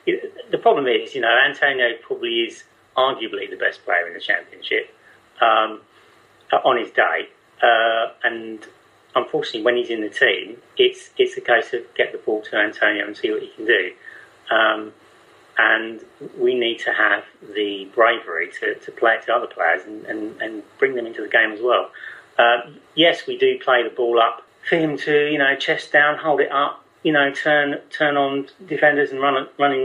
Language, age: English, 40-59